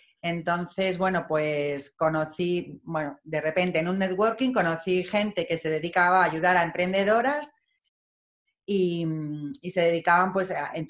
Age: 30-49